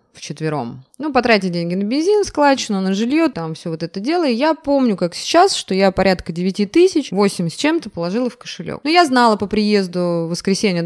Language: Russian